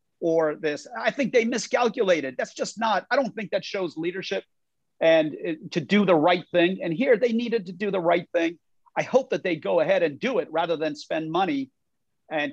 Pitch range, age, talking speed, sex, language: 165-235 Hz, 50-69, 215 wpm, male, English